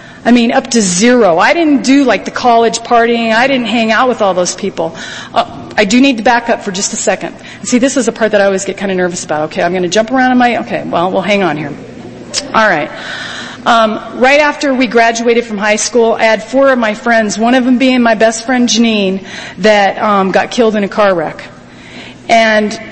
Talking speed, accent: 240 wpm, American